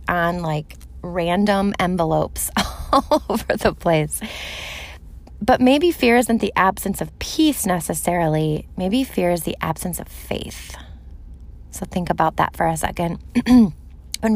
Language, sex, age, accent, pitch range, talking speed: English, female, 20-39, American, 150-205 Hz, 135 wpm